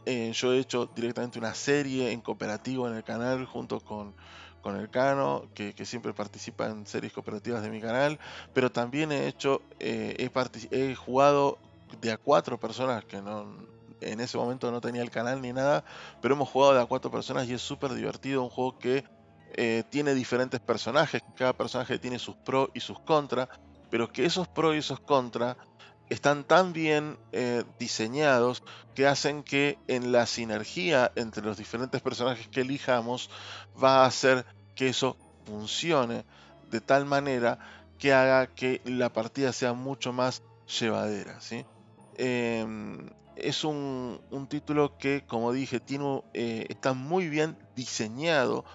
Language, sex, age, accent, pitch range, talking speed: Spanish, male, 20-39, Argentinian, 115-135 Hz, 160 wpm